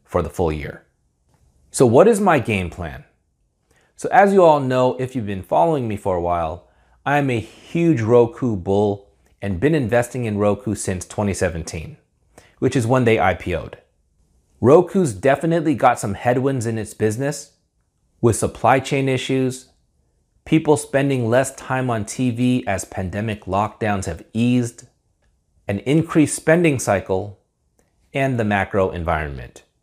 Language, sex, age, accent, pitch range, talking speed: English, male, 30-49, American, 95-135 Hz, 140 wpm